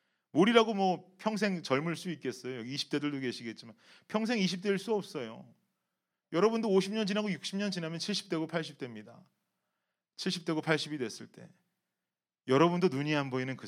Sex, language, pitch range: male, Korean, 115-165 Hz